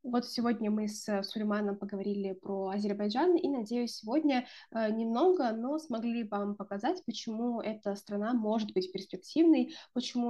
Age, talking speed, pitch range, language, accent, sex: 20-39, 135 wpm, 205-250 Hz, Russian, native, female